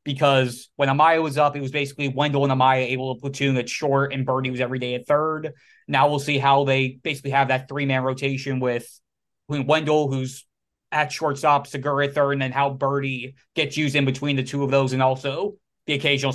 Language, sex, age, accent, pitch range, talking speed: English, male, 20-39, American, 135-150 Hz, 210 wpm